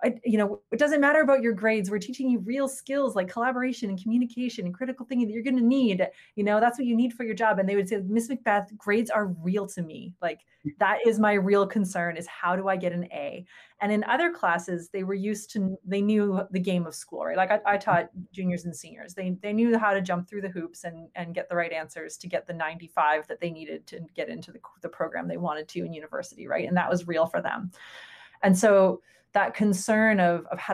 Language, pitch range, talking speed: English, 175-220 Hz, 250 wpm